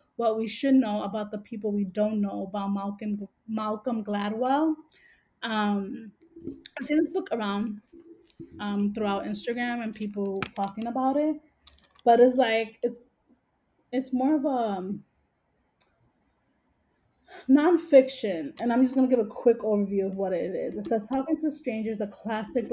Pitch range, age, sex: 205-250 Hz, 20-39, female